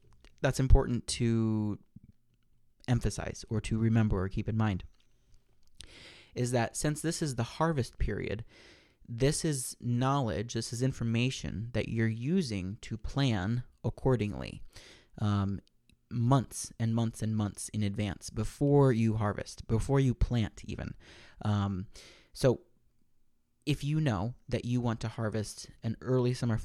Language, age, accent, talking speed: English, 30-49, American, 135 wpm